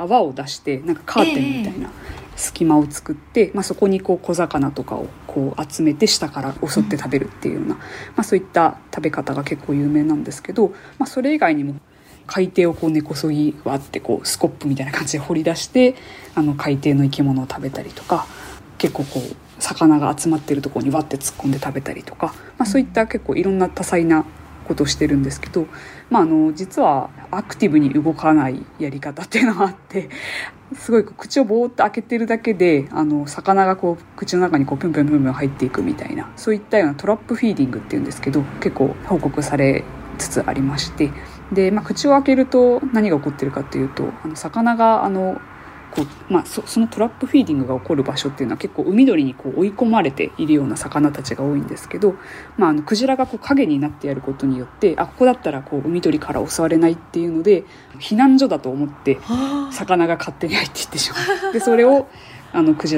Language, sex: Japanese, female